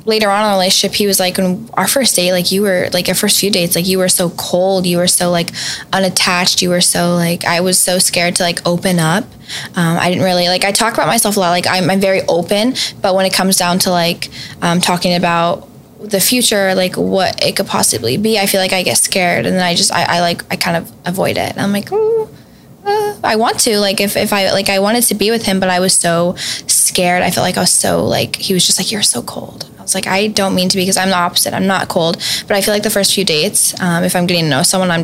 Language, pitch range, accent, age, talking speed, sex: English, 175-200 Hz, American, 10-29, 280 wpm, female